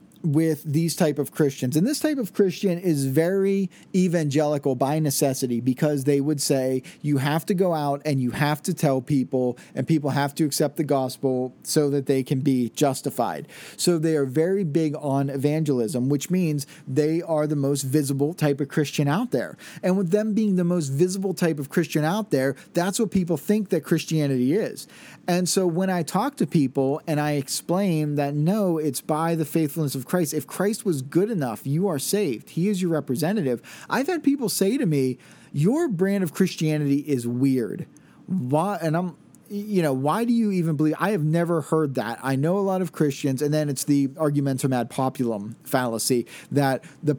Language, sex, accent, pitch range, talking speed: English, male, American, 140-180 Hz, 195 wpm